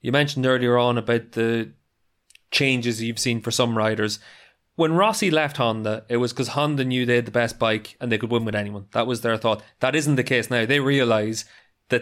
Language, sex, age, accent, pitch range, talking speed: English, male, 20-39, Irish, 115-140 Hz, 220 wpm